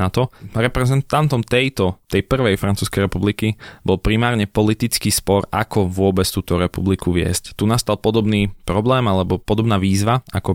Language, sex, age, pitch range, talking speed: Slovak, male, 20-39, 100-120 Hz, 140 wpm